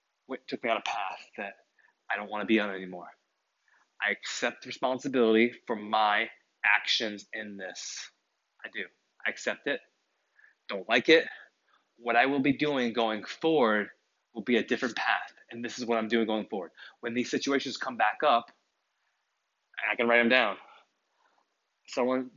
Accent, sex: American, male